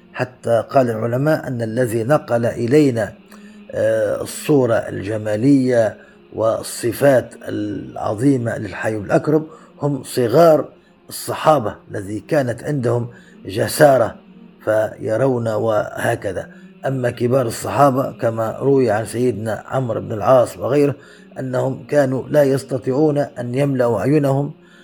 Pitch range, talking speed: 115-155 Hz, 95 wpm